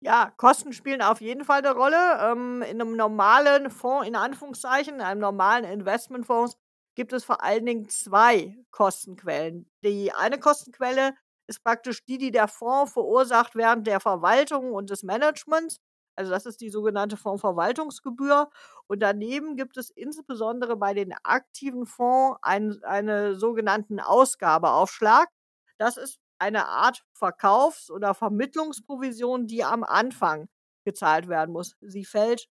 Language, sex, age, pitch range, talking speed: German, female, 50-69, 200-260 Hz, 140 wpm